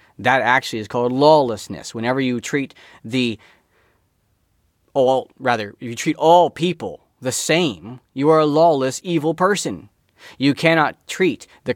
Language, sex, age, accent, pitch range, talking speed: German, male, 30-49, American, 115-165 Hz, 145 wpm